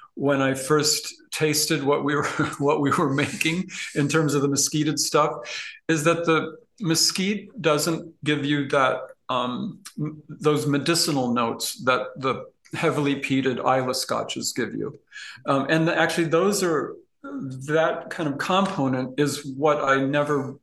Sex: male